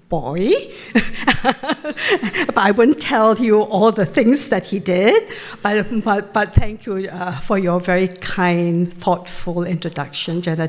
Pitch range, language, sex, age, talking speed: 175-225 Hz, English, female, 60-79, 140 wpm